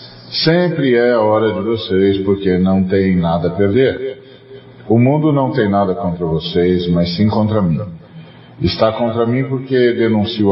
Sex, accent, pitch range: male, Brazilian, 90-125 Hz